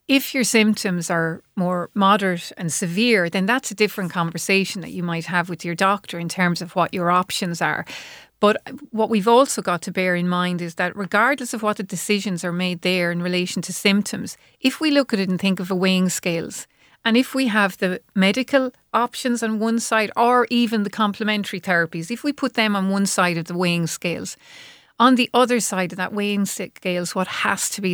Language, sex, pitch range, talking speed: English, female, 180-220 Hz, 215 wpm